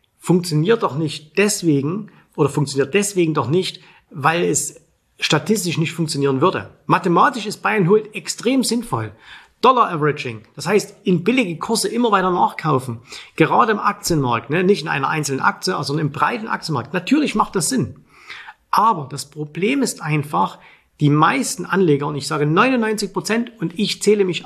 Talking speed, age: 165 wpm, 40-59